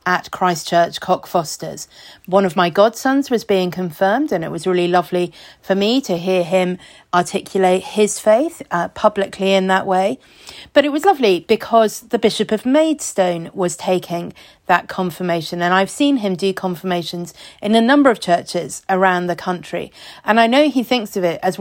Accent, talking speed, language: British, 175 wpm, English